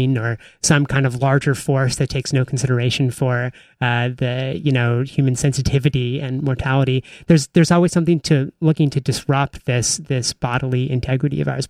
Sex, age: male, 30-49